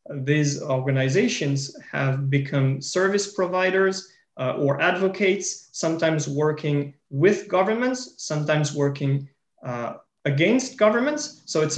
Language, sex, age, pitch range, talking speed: English, male, 30-49, 140-185 Hz, 100 wpm